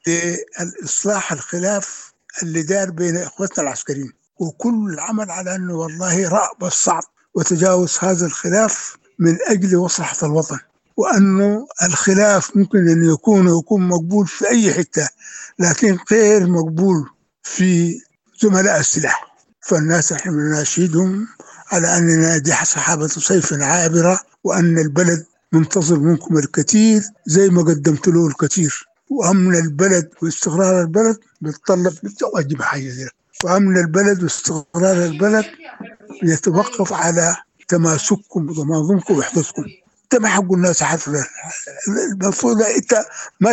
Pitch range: 170-210 Hz